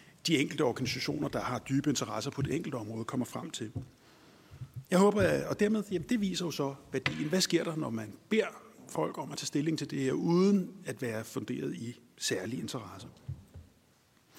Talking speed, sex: 195 wpm, male